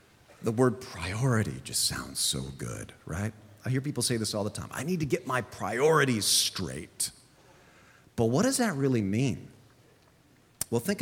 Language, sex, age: English, male, 40-59